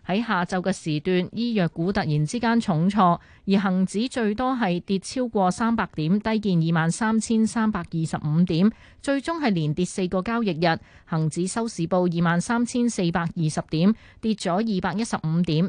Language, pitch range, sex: Chinese, 165-220 Hz, female